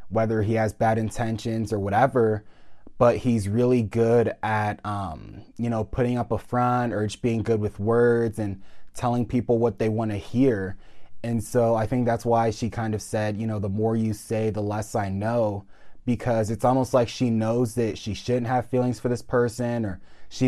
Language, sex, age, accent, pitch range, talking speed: English, male, 20-39, American, 105-120 Hz, 200 wpm